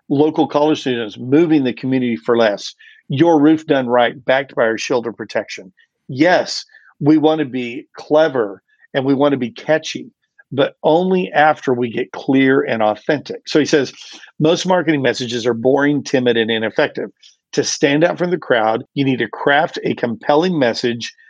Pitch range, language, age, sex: 120-150 Hz, English, 50-69, male